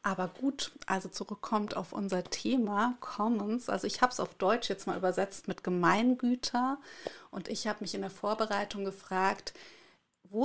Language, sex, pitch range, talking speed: German, female, 190-230 Hz, 160 wpm